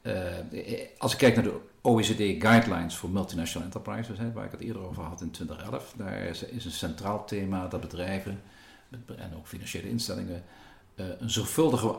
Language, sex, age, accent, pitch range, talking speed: Dutch, male, 50-69, Dutch, 90-115 Hz, 170 wpm